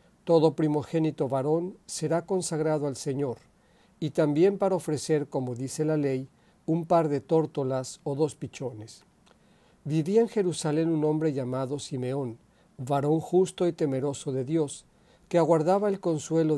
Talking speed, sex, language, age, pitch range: 140 wpm, male, Spanish, 50-69, 140-170 Hz